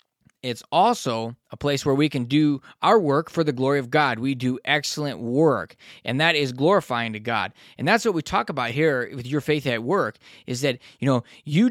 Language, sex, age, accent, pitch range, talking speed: English, male, 20-39, American, 130-170 Hz, 215 wpm